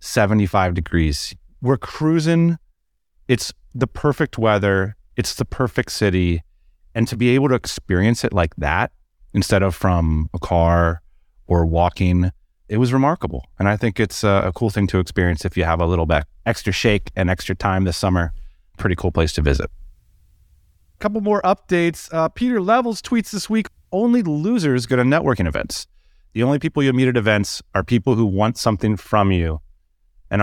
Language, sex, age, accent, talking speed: English, male, 30-49, American, 175 wpm